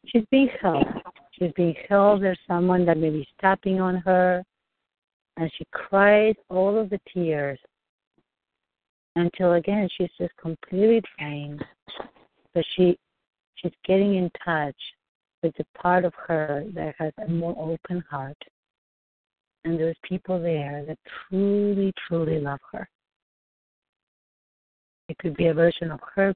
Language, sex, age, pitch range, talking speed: English, female, 60-79, 160-190 Hz, 135 wpm